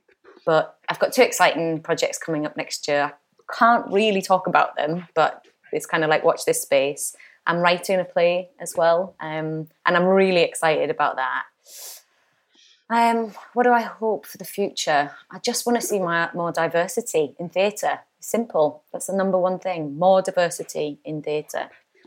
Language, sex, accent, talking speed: English, female, British, 175 wpm